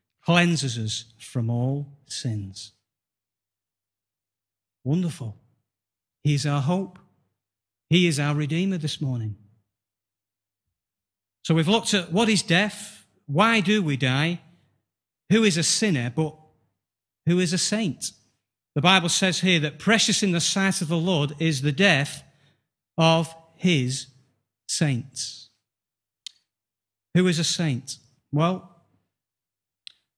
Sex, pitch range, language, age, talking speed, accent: male, 125-175 Hz, English, 40-59, 120 wpm, British